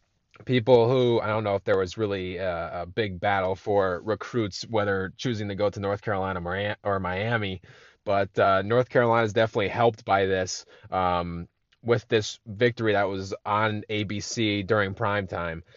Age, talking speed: 20-39, 160 wpm